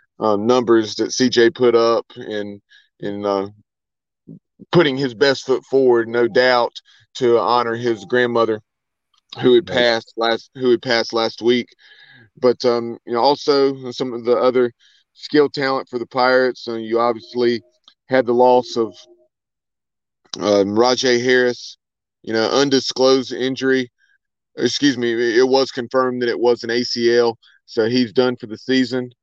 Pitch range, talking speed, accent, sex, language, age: 115-130 Hz, 150 wpm, American, male, English, 30-49